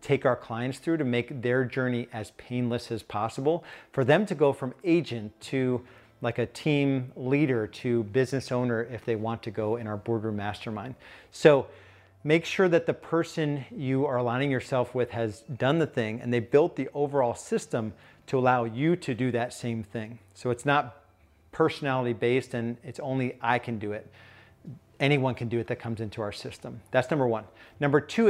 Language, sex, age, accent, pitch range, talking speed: English, male, 40-59, American, 115-145 Hz, 190 wpm